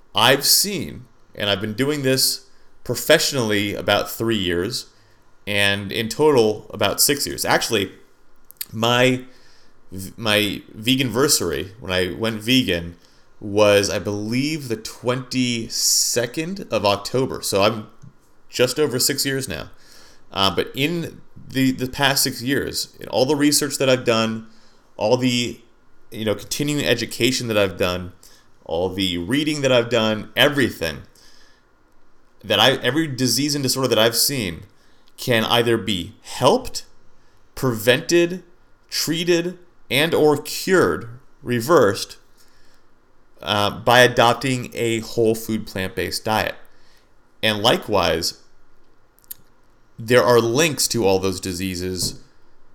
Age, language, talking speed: 30-49, English, 120 wpm